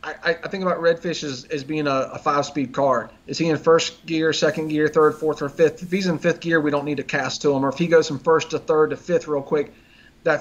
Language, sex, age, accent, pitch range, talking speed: English, male, 30-49, American, 145-165 Hz, 275 wpm